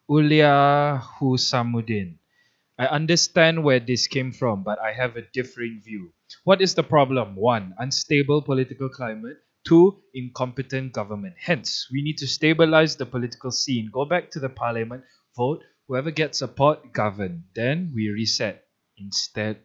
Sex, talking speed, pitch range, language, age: male, 145 wpm, 115-145 Hz, Malay, 20-39